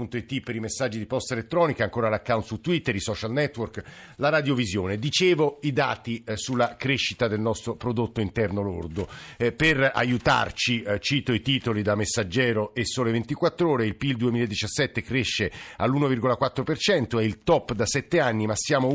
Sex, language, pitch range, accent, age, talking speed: male, Italian, 115-140 Hz, native, 50-69, 150 wpm